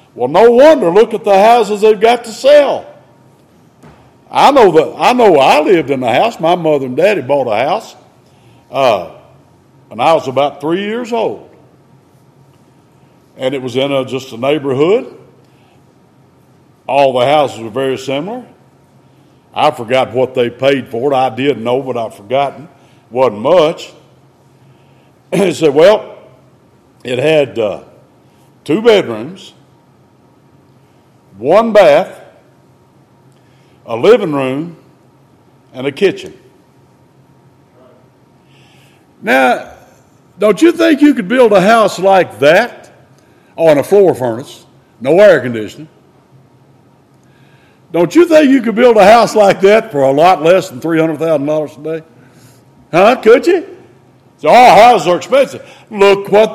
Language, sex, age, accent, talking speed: English, male, 60-79, American, 140 wpm